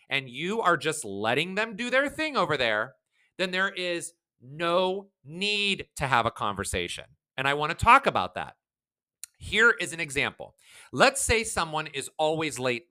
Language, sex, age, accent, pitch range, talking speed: English, male, 30-49, American, 135-200 Hz, 165 wpm